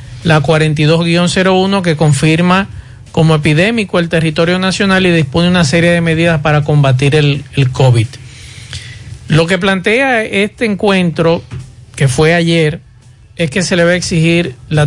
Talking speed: 145 wpm